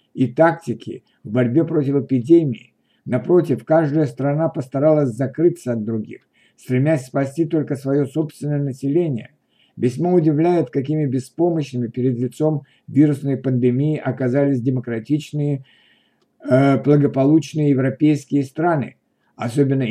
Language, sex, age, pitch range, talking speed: Russian, male, 50-69, 130-155 Hz, 100 wpm